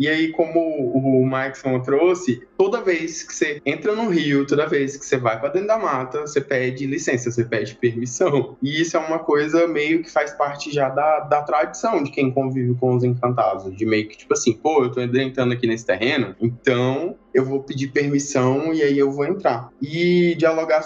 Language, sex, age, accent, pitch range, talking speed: Portuguese, male, 20-39, Brazilian, 130-170 Hz, 205 wpm